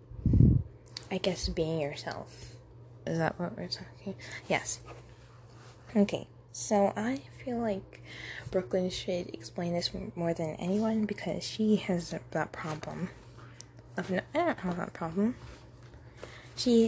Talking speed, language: 125 wpm, English